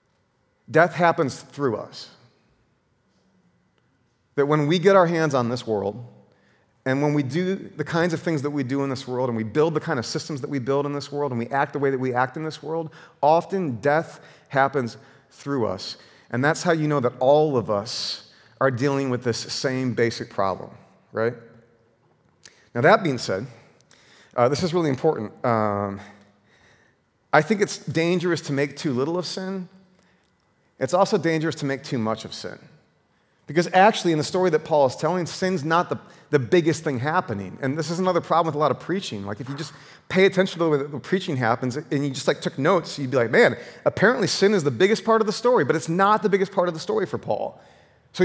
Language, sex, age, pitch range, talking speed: English, male, 40-59, 125-175 Hz, 215 wpm